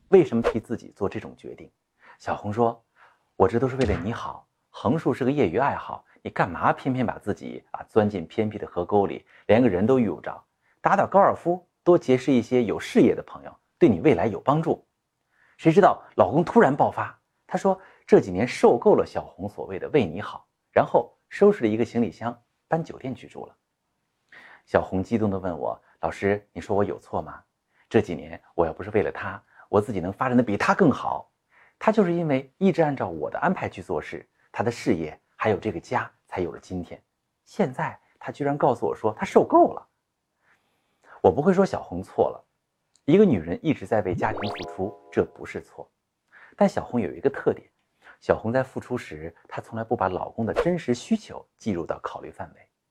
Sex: male